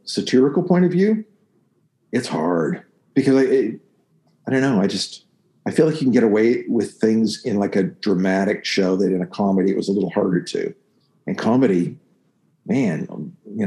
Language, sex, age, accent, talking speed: English, male, 50-69, American, 180 wpm